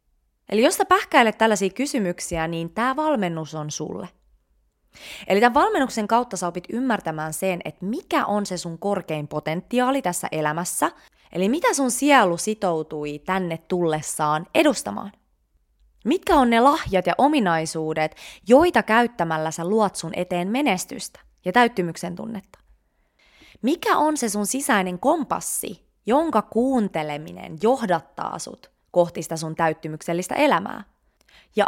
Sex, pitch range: female, 165-245 Hz